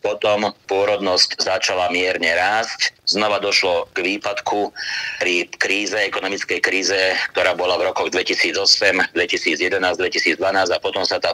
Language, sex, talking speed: Slovak, male, 125 wpm